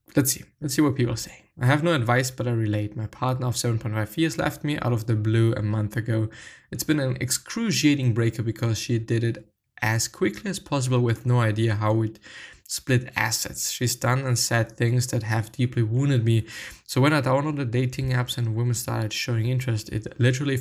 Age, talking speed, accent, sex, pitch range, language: 20-39, 215 wpm, German, male, 110-130 Hz, English